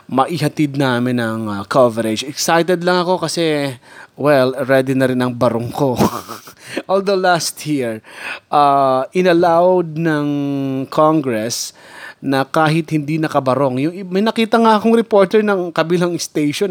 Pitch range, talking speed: 130-165 Hz, 125 wpm